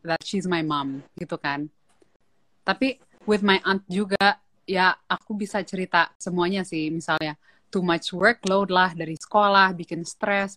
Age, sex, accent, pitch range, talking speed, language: 20-39, female, Indonesian, 170-215 Hz, 150 wpm, English